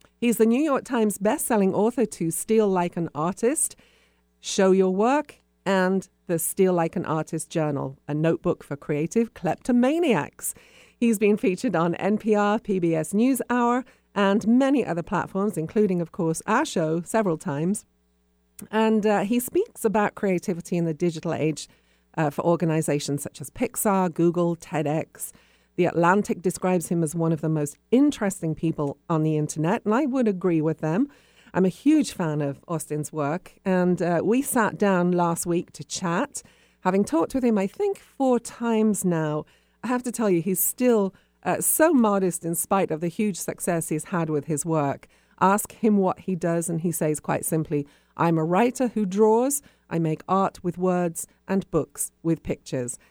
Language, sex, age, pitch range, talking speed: English, female, 40-59, 160-215 Hz, 175 wpm